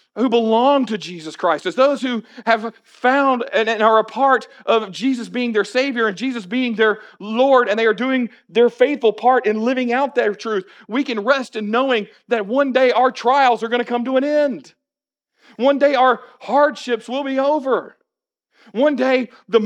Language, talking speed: English, 190 wpm